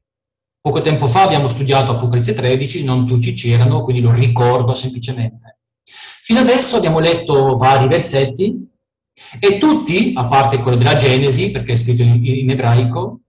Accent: native